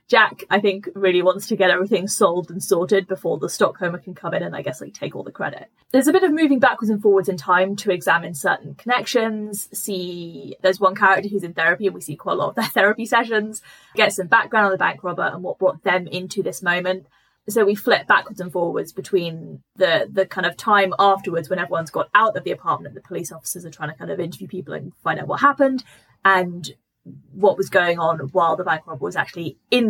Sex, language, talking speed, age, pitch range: female, English, 235 wpm, 20-39, 185-225 Hz